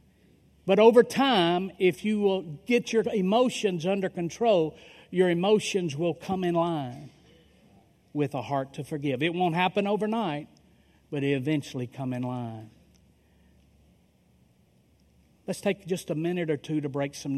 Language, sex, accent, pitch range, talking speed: English, male, American, 150-195 Hz, 145 wpm